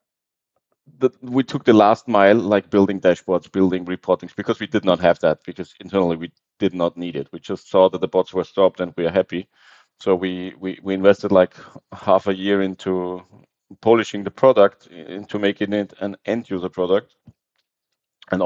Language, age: English, 30-49